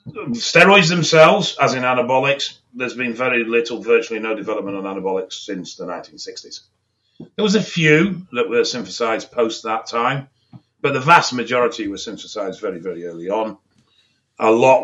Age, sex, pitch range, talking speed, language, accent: 40-59, male, 100-125 Hz, 160 wpm, English, British